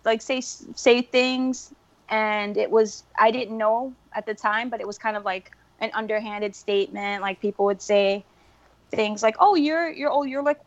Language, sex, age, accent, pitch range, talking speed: English, female, 20-39, American, 200-255 Hz, 190 wpm